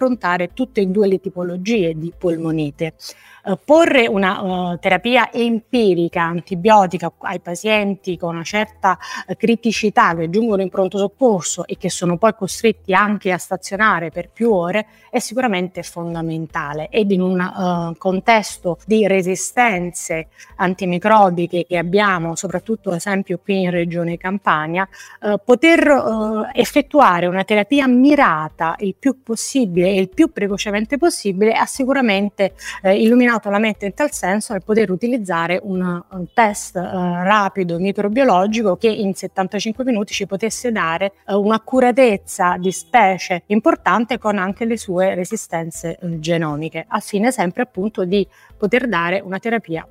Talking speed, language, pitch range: 135 wpm, Italian, 175-220 Hz